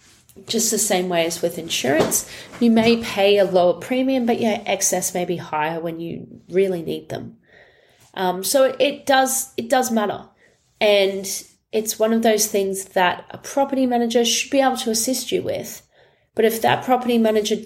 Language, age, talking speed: English, 30-49, 175 wpm